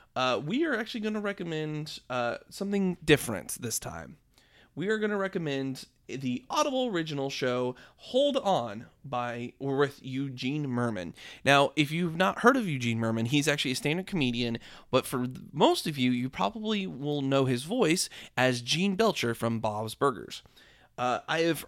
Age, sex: 30-49, male